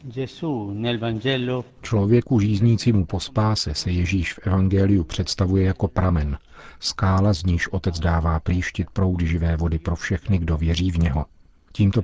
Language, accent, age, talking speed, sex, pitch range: Czech, native, 50-69, 135 wpm, male, 85-100 Hz